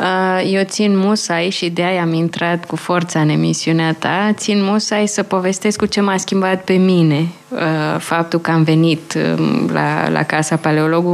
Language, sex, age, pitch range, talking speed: Romanian, female, 20-39, 155-190 Hz, 165 wpm